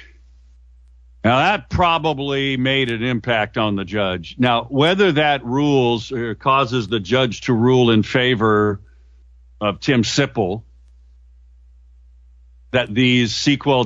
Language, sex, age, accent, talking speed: English, male, 50-69, American, 115 wpm